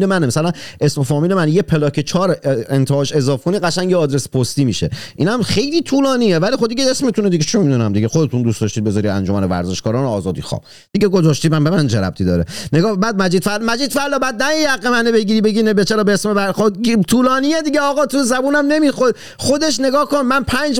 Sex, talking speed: male, 200 wpm